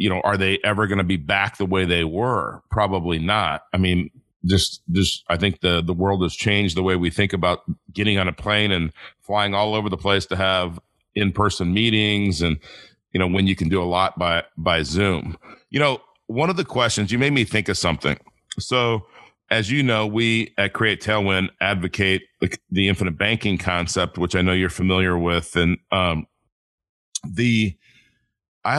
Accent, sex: American, male